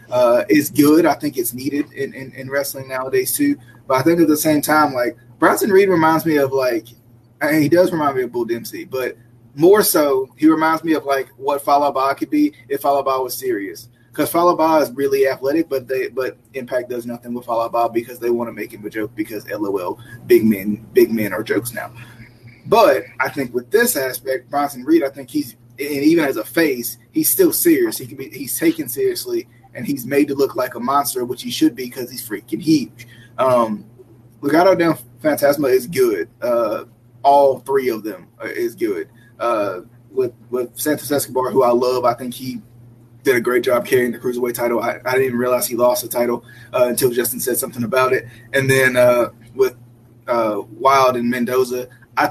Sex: male